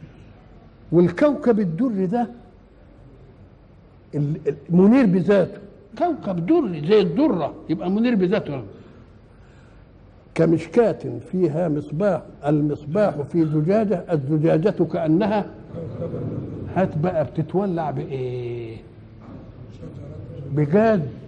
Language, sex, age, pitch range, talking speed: Arabic, male, 60-79, 130-195 Hz, 70 wpm